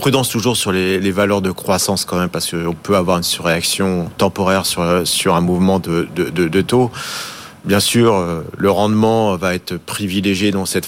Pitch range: 95-120 Hz